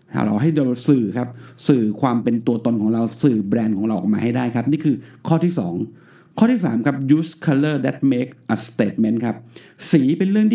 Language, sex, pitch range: Thai, male, 120-155 Hz